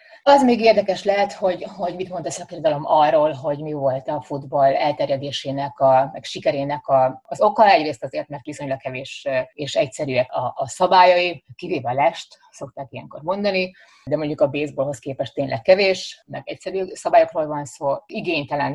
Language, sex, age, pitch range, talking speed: Hungarian, female, 30-49, 135-180 Hz, 165 wpm